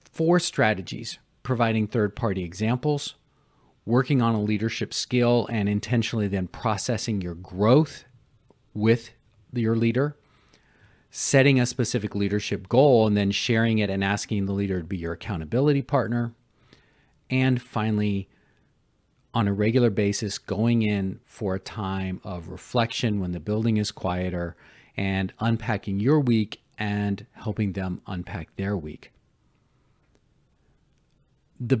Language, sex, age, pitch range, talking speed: English, male, 40-59, 100-125 Hz, 125 wpm